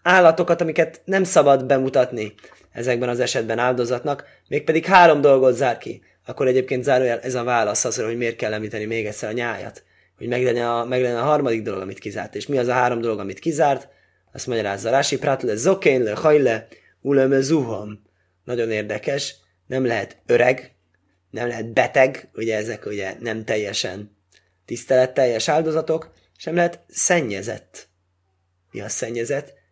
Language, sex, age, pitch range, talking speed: Hungarian, male, 20-39, 105-160 Hz, 150 wpm